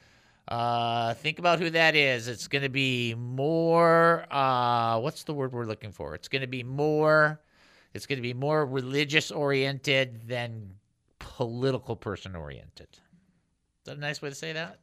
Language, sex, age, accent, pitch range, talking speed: English, male, 50-69, American, 120-155 Hz, 150 wpm